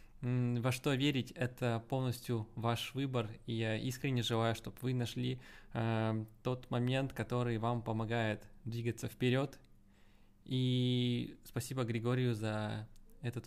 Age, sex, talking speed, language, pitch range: 20-39, male, 120 wpm, Russian, 110-125 Hz